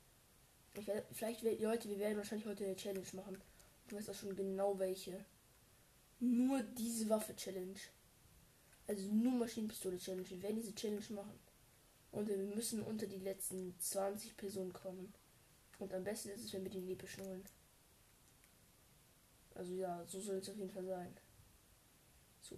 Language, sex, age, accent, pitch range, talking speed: German, female, 10-29, German, 195-220 Hz, 155 wpm